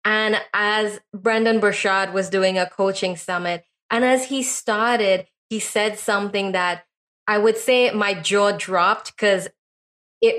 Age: 20-39